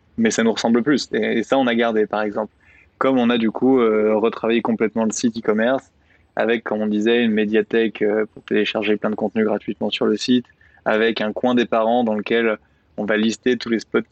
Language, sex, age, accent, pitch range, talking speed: French, male, 20-39, French, 110-125 Hz, 215 wpm